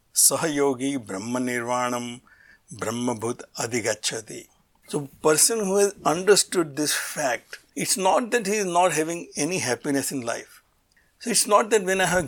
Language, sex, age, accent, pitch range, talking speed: English, male, 60-79, Indian, 135-180 Hz, 150 wpm